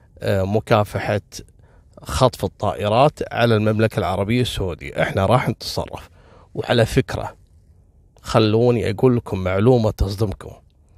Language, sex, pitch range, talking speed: Arabic, male, 100-130 Hz, 95 wpm